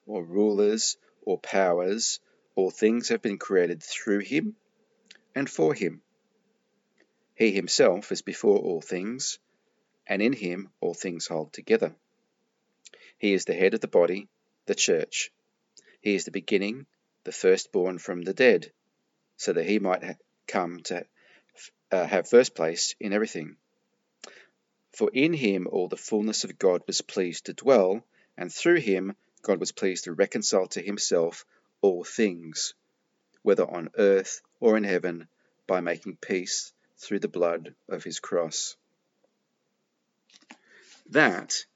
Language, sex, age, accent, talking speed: English, male, 40-59, Australian, 140 wpm